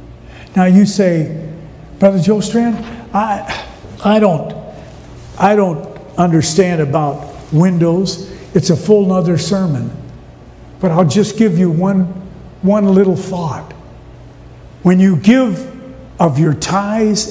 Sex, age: male, 60-79